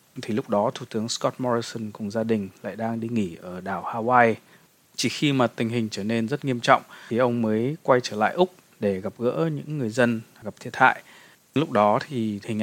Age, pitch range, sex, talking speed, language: 20-39, 110-130 Hz, male, 225 wpm, Vietnamese